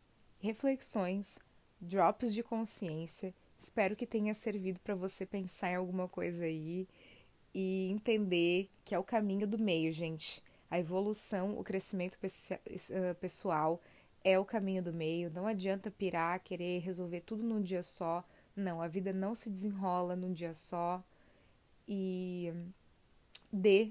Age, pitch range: 20-39, 180-205 Hz